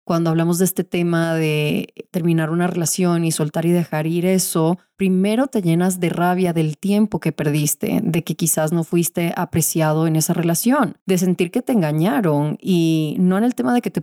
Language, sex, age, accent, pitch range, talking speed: Spanish, female, 30-49, Mexican, 160-195 Hz, 195 wpm